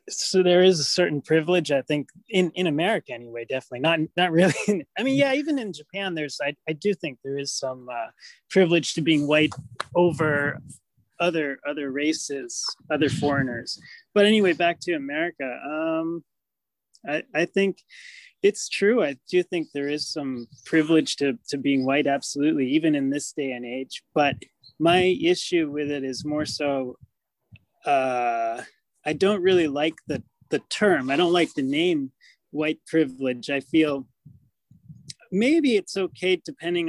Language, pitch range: English, 140-180 Hz